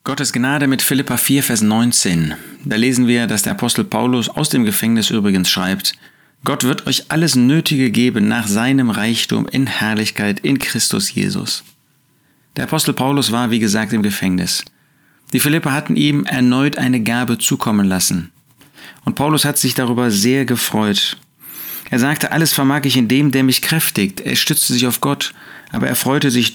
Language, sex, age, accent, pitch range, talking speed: German, male, 40-59, German, 110-145 Hz, 170 wpm